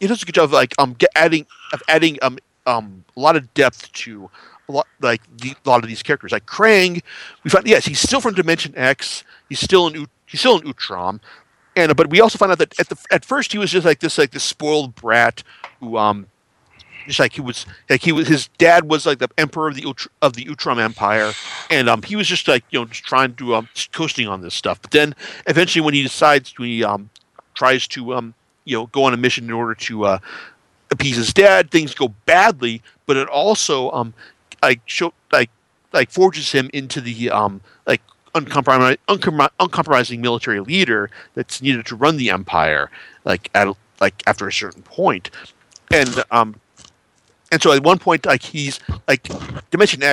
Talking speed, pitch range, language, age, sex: 210 wpm, 120-165 Hz, English, 50-69, male